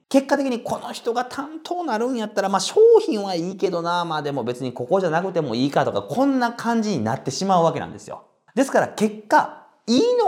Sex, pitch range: male, 180-275 Hz